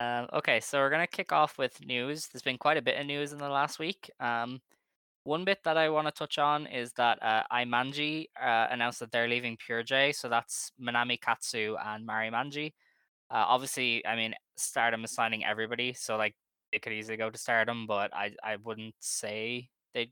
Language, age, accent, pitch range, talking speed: English, 10-29, Irish, 110-135 Hz, 210 wpm